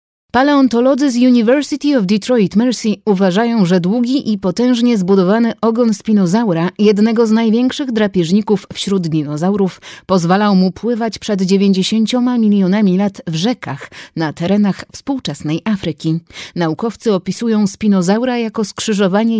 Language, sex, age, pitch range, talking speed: Polish, female, 30-49, 180-235 Hz, 120 wpm